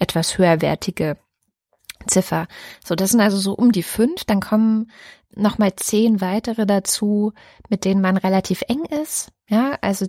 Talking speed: 150 wpm